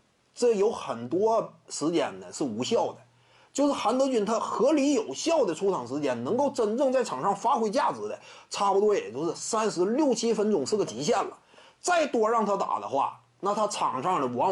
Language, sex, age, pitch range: Chinese, male, 30-49, 190-285 Hz